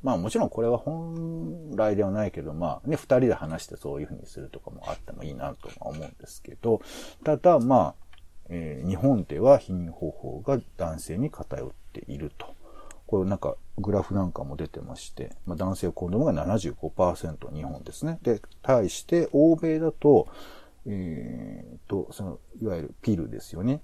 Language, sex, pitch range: Japanese, male, 80-135 Hz